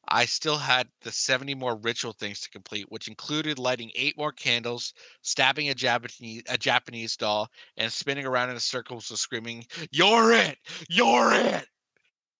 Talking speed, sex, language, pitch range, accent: 165 wpm, male, English, 115-145 Hz, American